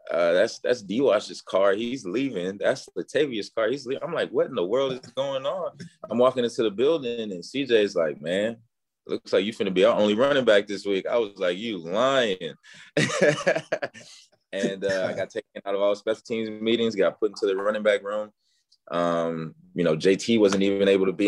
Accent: American